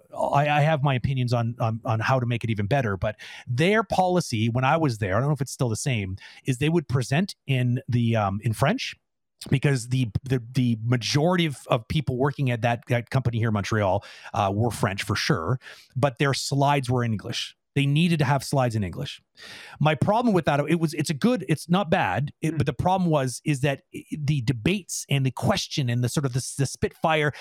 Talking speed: 225 wpm